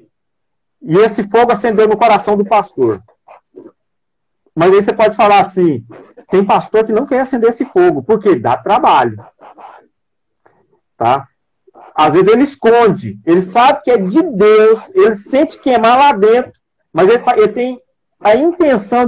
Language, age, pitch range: Portuguese, 50-69, 190-275 Hz